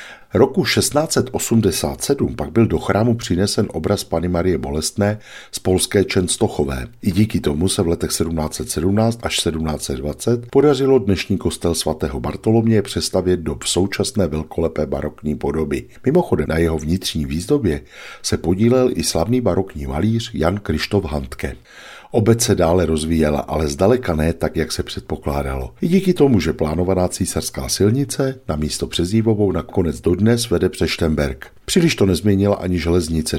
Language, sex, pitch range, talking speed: Czech, male, 80-100 Hz, 140 wpm